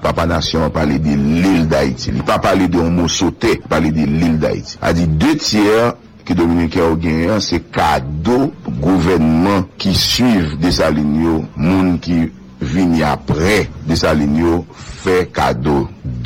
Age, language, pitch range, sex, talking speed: 60-79, English, 80-115 Hz, male, 150 wpm